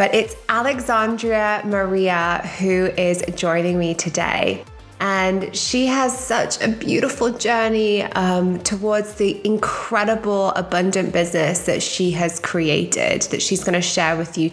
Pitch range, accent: 175-210 Hz, British